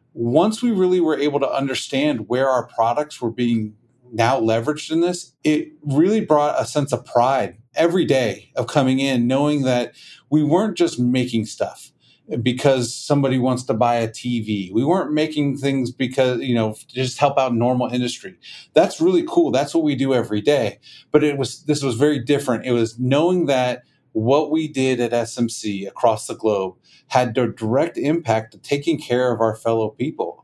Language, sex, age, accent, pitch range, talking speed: English, male, 30-49, American, 115-145 Hz, 180 wpm